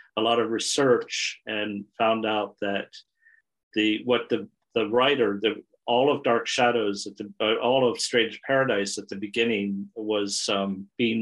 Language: English